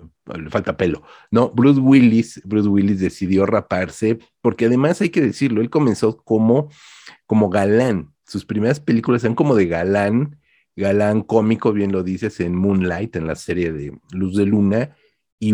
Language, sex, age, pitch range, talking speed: Spanish, male, 40-59, 95-120 Hz, 160 wpm